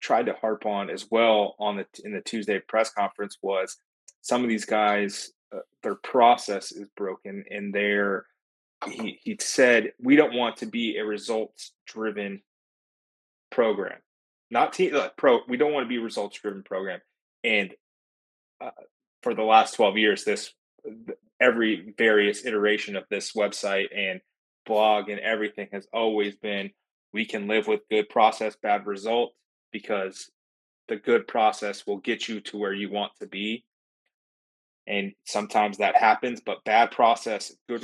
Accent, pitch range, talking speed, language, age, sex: American, 100-115 Hz, 155 wpm, English, 20-39, male